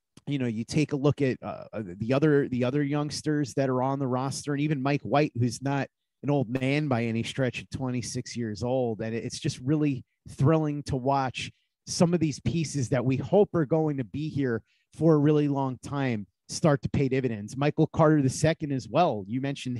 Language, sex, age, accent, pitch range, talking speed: English, male, 30-49, American, 130-160 Hz, 210 wpm